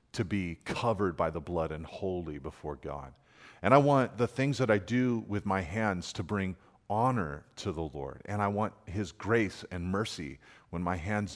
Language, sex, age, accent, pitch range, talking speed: English, male, 40-59, American, 85-105 Hz, 195 wpm